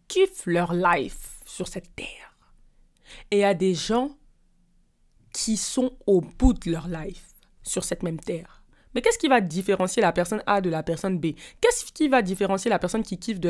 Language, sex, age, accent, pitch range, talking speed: French, female, 20-39, French, 180-255 Hz, 190 wpm